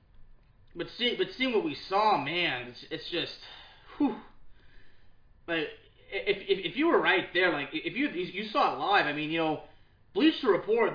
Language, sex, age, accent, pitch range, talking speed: English, male, 20-39, American, 145-205 Hz, 185 wpm